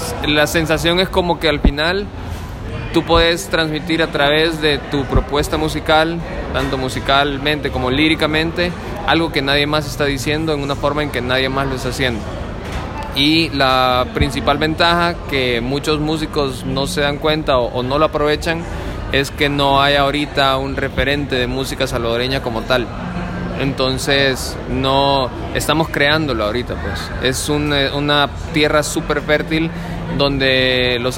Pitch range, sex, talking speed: 125-150 Hz, male, 150 wpm